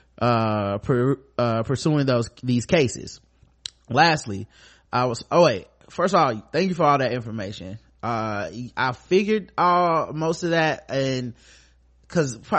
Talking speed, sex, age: 145 wpm, male, 20-39